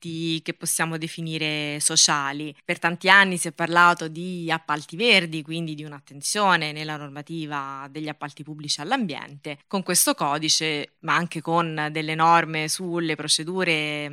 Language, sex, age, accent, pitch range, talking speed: Italian, female, 20-39, native, 150-175 Hz, 135 wpm